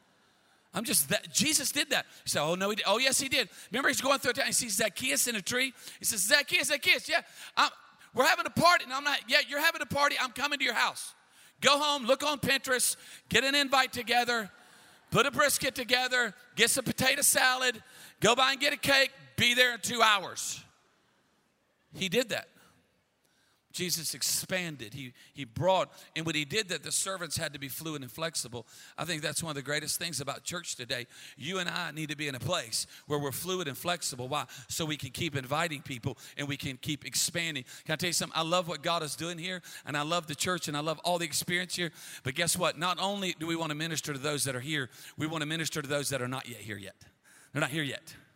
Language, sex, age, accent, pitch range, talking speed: English, male, 40-59, American, 150-250 Hz, 240 wpm